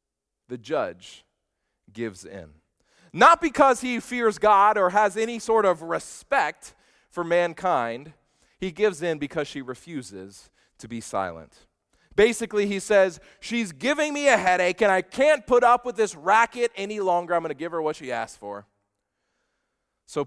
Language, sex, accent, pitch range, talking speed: English, male, American, 125-210 Hz, 160 wpm